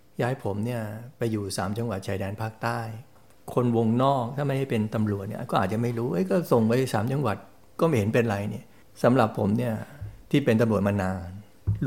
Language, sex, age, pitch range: Thai, male, 60-79, 105-135 Hz